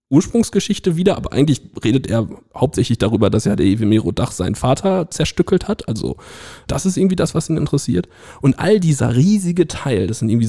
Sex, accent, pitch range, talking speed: male, German, 115-165 Hz, 190 wpm